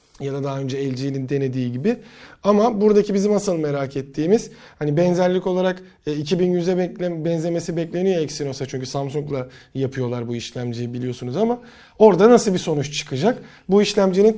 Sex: male